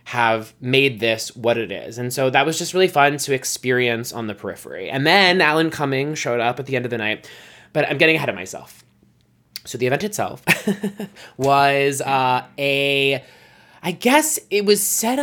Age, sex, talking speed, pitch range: 20-39, male, 190 wpm, 125-175 Hz